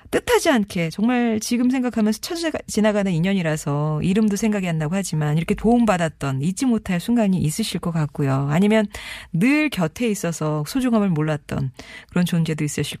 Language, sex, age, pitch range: Korean, female, 40-59, 155-225 Hz